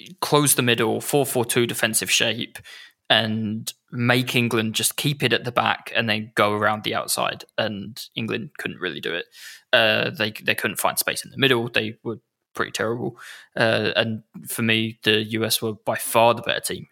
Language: English